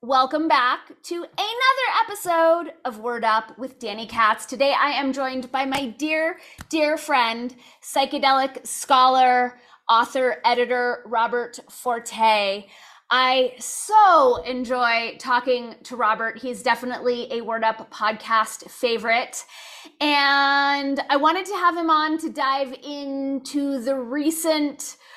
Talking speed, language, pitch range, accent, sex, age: 120 wpm, English, 240-280 Hz, American, female, 30-49